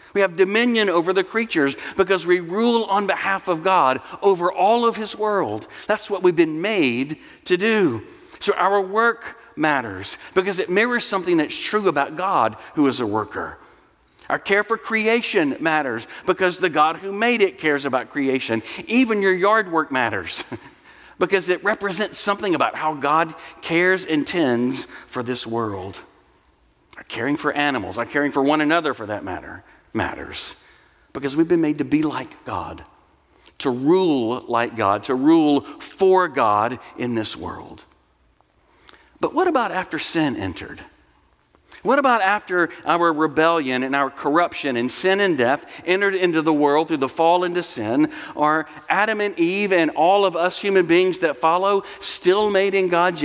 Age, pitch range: 50-69, 145-200 Hz